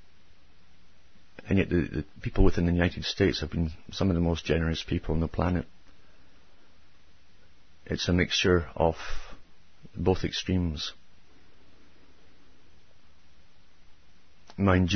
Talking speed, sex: 110 wpm, male